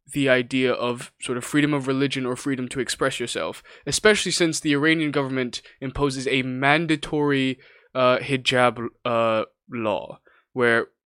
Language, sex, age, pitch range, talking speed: English, male, 20-39, 125-150 Hz, 140 wpm